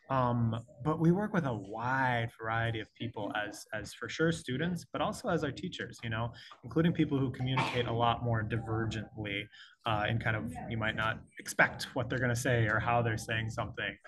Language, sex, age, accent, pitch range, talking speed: English, male, 20-39, American, 110-140 Hz, 200 wpm